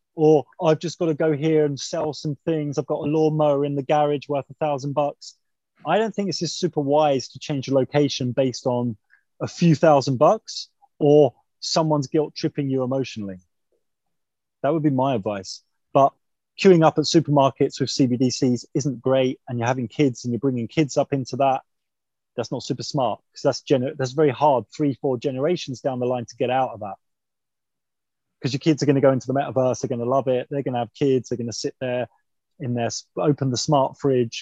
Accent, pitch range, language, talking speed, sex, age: British, 125-150 Hz, English, 210 wpm, male, 20-39